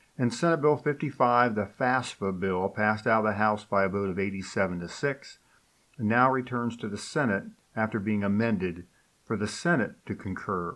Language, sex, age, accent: English, male, 50-69, American